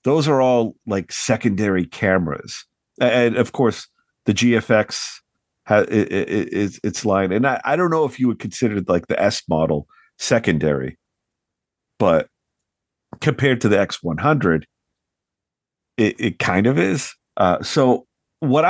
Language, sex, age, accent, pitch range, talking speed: English, male, 50-69, American, 85-115 Hz, 140 wpm